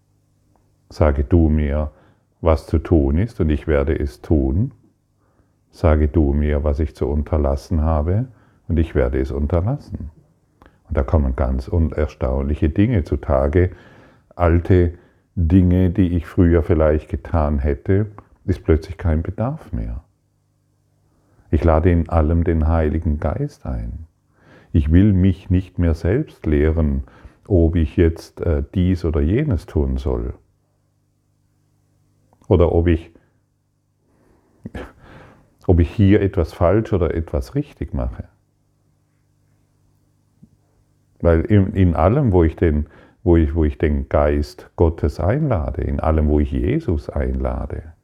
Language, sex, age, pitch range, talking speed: German, male, 40-59, 75-100 Hz, 120 wpm